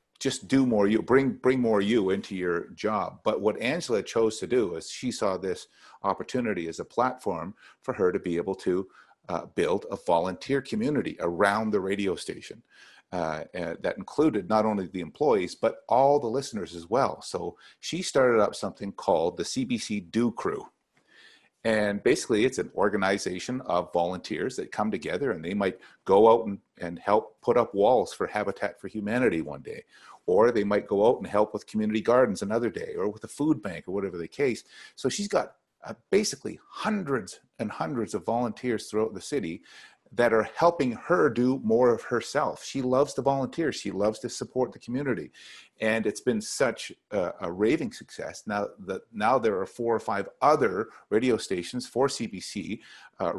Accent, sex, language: American, male, English